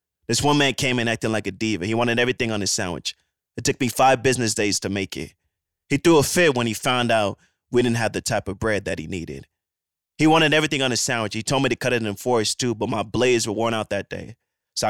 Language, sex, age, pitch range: English, male, 20-39, 105-130 Hz